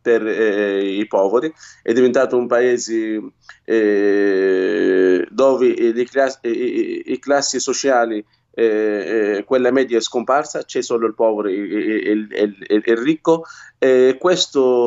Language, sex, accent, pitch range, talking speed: Italian, male, native, 105-130 Hz, 135 wpm